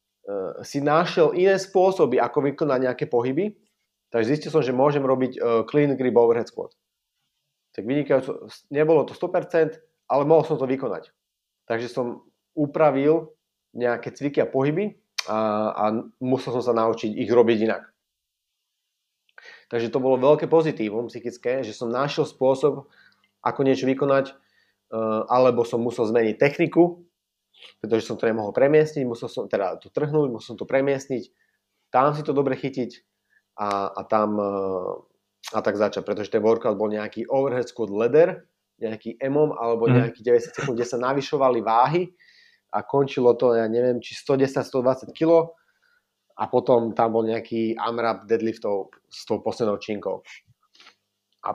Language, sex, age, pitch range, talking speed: Slovak, male, 30-49, 115-150 Hz, 145 wpm